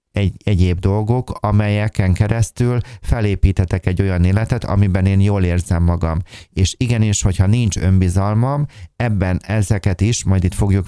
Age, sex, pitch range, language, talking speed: 30-49, male, 95-110 Hz, Hungarian, 140 wpm